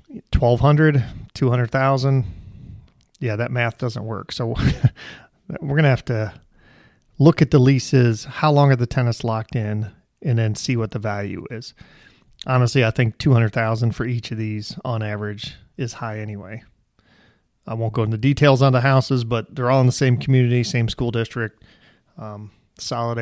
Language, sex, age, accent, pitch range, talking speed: English, male, 30-49, American, 110-130 Hz, 175 wpm